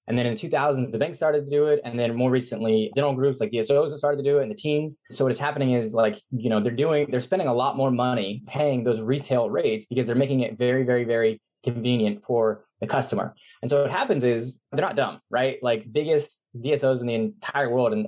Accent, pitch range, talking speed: American, 120-140 Hz, 245 wpm